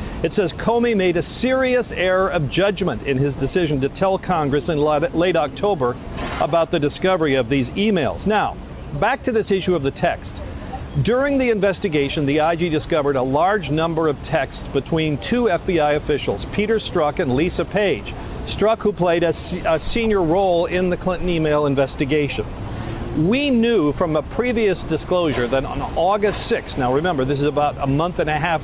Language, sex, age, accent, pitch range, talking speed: English, male, 50-69, American, 145-195 Hz, 175 wpm